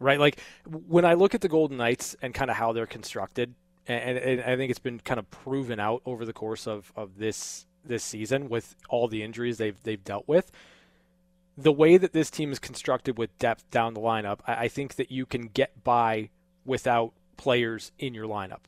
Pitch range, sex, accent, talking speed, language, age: 115-140 Hz, male, American, 210 wpm, English, 20-39